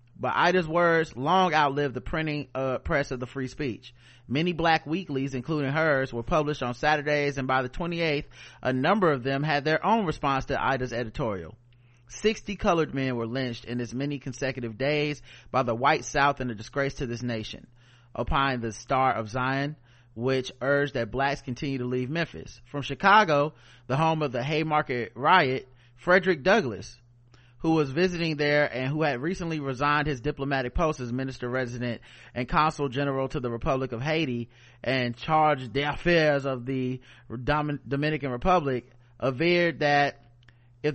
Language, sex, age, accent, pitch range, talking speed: English, male, 30-49, American, 120-155 Hz, 165 wpm